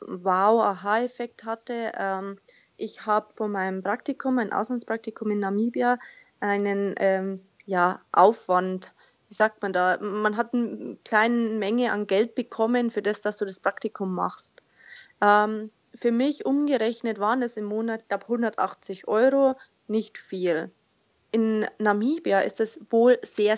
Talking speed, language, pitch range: 135 wpm, German, 200-240 Hz